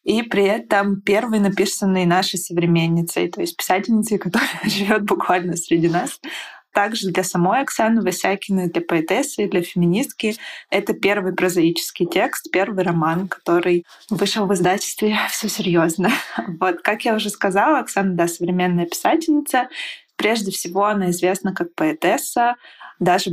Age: 20-39